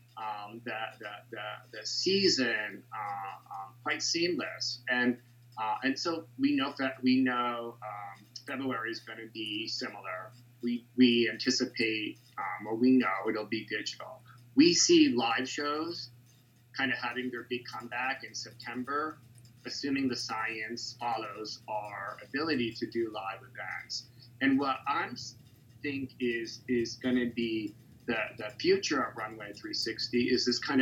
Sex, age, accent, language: male, 30-49, American, English